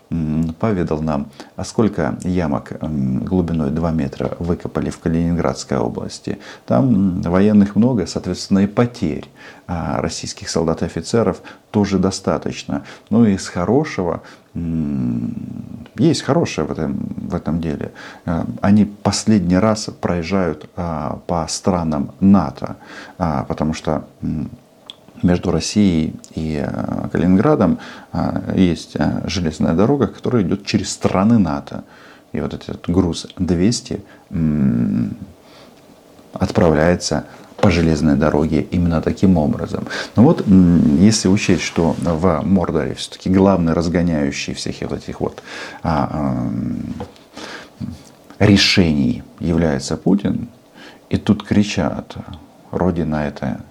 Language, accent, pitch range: Russian, native, 80-95 Hz